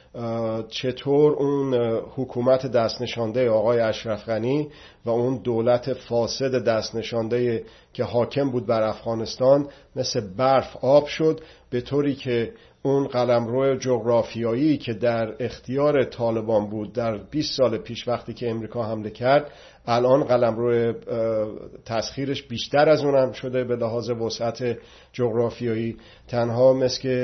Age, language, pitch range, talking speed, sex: 50-69, Persian, 115-135 Hz, 125 wpm, male